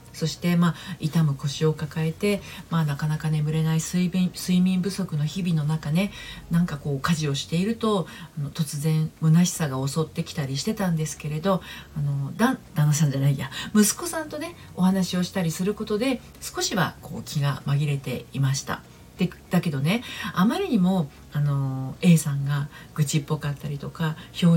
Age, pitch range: 40-59, 150-190 Hz